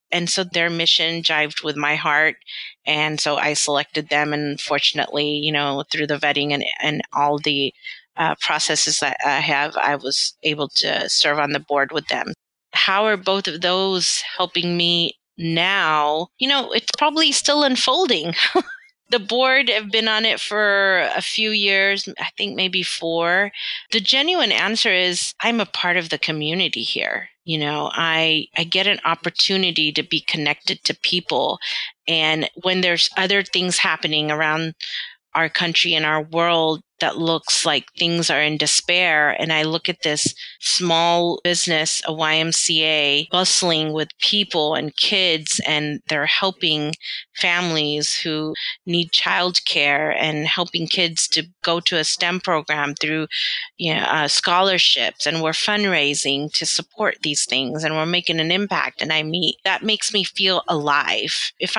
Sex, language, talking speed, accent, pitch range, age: female, English, 160 wpm, American, 155-190 Hz, 30-49